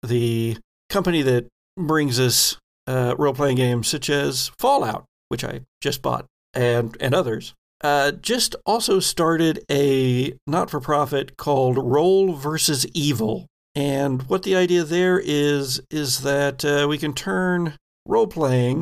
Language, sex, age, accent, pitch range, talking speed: English, male, 60-79, American, 130-160 Hz, 130 wpm